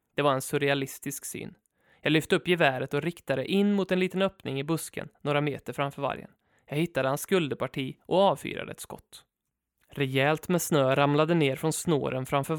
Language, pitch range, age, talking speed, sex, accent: Swedish, 140-180 Hz, 20-39, 180 wpm, male, native